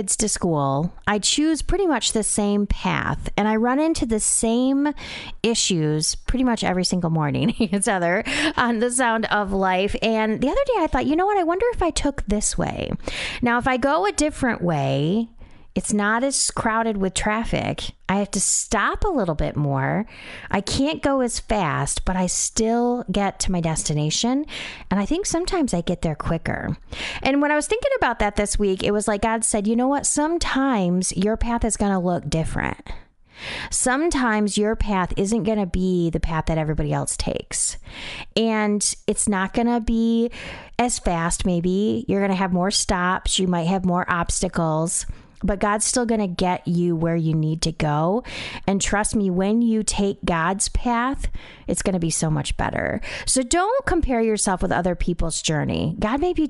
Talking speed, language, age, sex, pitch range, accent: 190 wpm, English, 30-49, female, 180-240 Hz, American